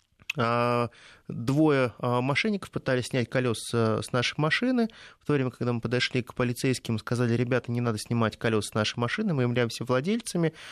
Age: 20-39